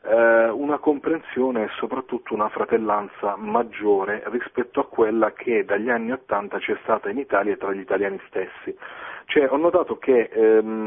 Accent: native